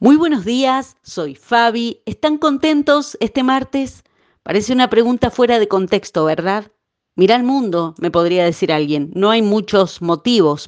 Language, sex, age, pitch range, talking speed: Spanish, female, 40-59, 175-235 Hz, 150 wpm